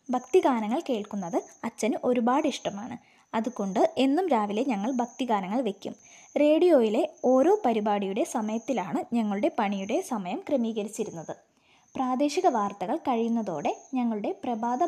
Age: 20-39